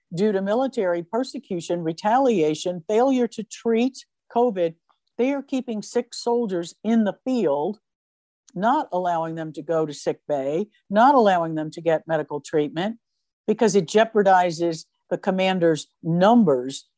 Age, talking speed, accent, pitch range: 60-79, 135 wpm, American, 160-220 Hz